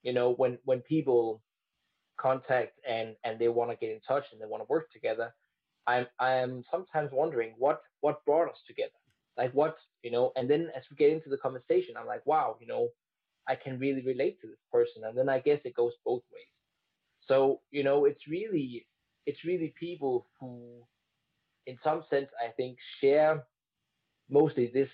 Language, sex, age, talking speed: English, male, 20-39, 190 wpm